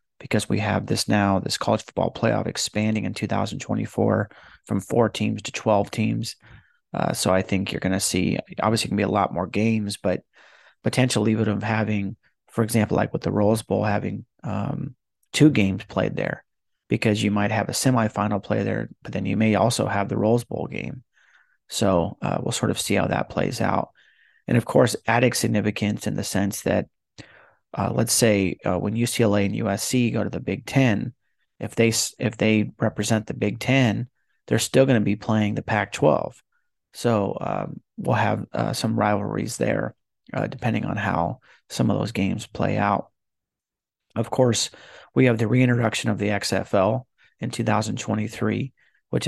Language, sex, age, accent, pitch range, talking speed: English, male, 30-49, American, 100-115 Hz, 180 wpm